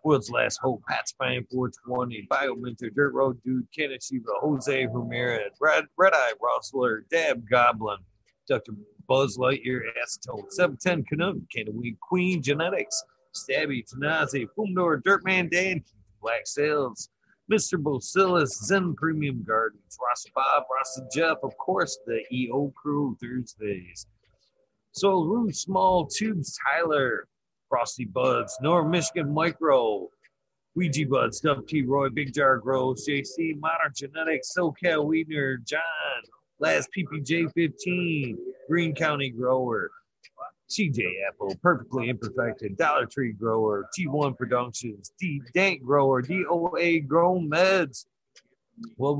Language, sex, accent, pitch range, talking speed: English, male, American, 130-180 Hz, 115 wpm